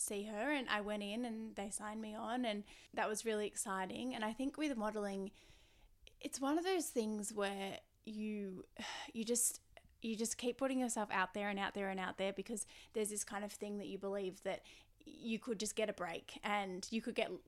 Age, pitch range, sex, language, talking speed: 10-29, 195-220 Hz, female, English, 215 wpm